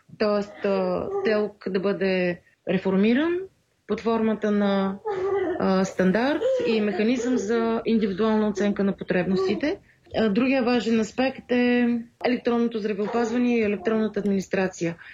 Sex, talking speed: female, 100 wpm